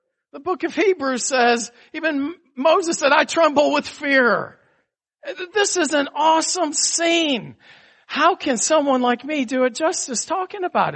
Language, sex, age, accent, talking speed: English, male, 50-69, American, 150 wpm